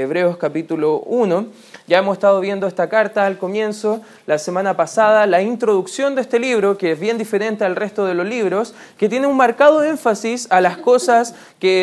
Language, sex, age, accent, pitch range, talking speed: Spanish, male, 20-39, Argentinian, 195-245 Hz, 190 wpm